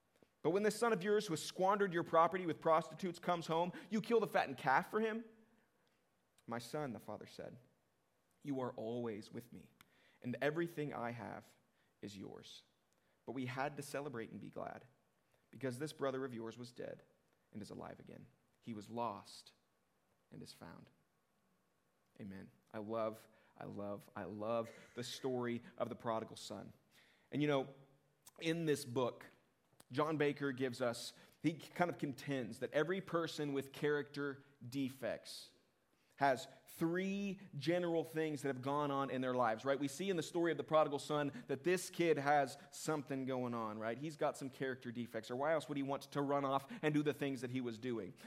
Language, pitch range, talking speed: English, 125-165 Hz, 185 wpm